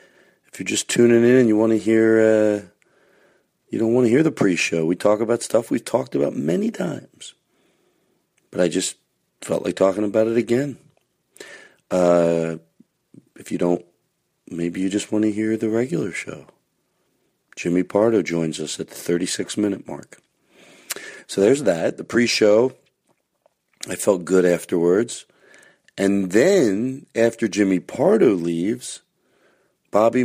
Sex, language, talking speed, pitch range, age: male, English, 150 wpm, 90-115 Hz, 40-59